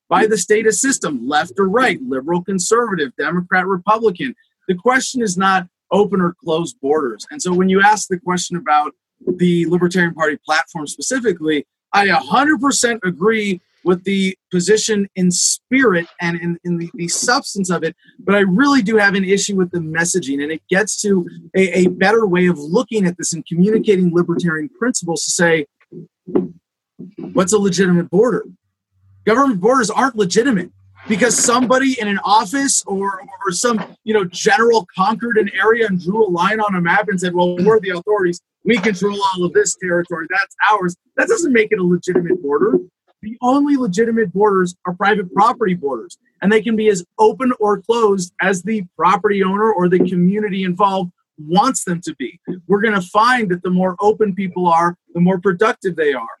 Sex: male